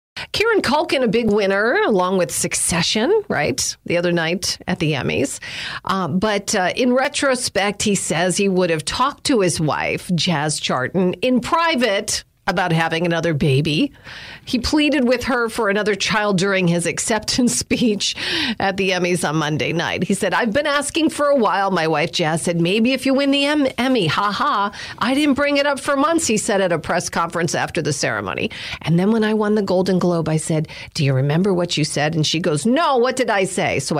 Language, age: English, 40-59